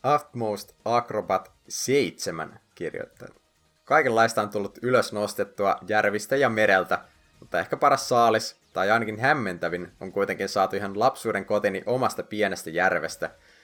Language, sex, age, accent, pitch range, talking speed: Finnish, male, 20-39, native, 100-120 Hz, 125 wpm